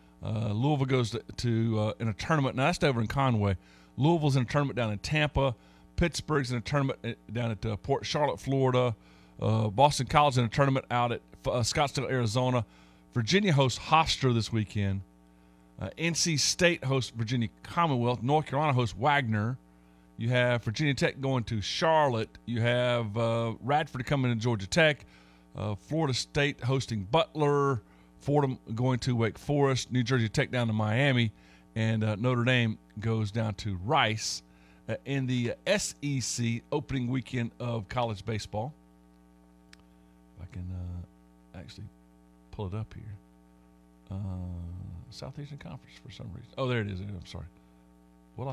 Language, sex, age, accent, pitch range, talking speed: English, male, 50-69, American, 95-130 Hz, 160 wpm